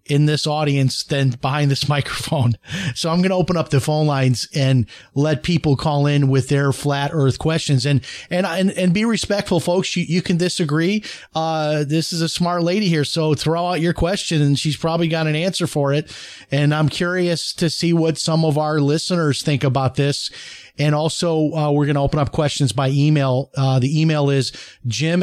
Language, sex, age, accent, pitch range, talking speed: English, male, 30-49, American, 140-160 Hz, 200 wpm